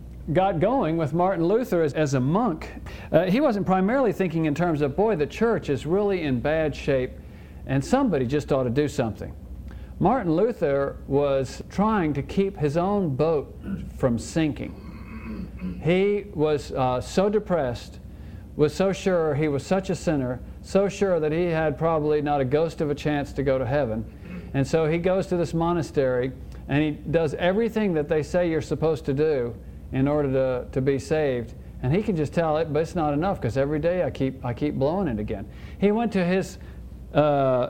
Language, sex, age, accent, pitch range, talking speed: English, male, 50-69, American, 130-165 Hz, 195 wpm